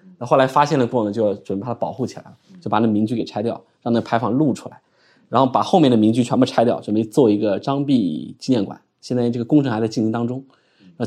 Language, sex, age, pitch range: Chinese, male, 20-39, 115-150 Hz